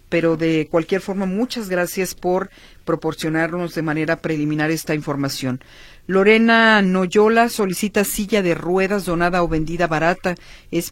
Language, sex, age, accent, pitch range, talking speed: Spanish, female, 50-69, Mexican, 160-195 Hz, 130 wpm